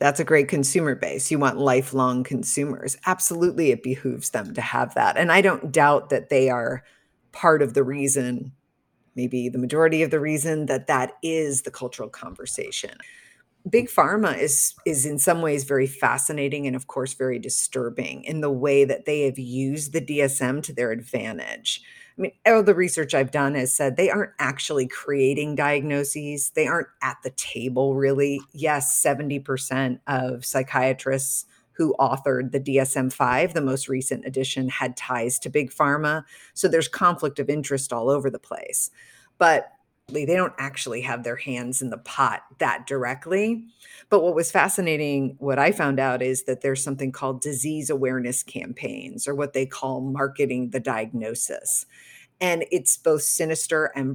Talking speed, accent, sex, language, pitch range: 165 wpm, American, female, English, 130-155 Hz